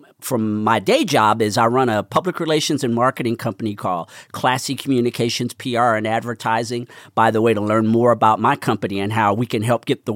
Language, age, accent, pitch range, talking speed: English, 40-59, American, 110-135 Hz, 205 wpm